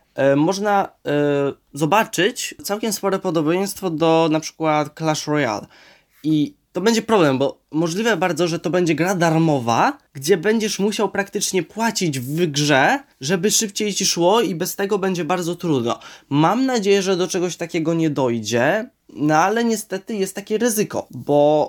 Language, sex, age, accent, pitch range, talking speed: Polish, male, 20-39, native, 140-185 Hz, 150 wpm